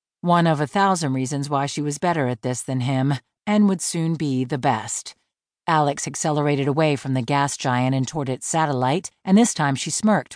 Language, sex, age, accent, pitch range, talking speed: English, female, 40-59, American, 140-190 Hz, 205 wpm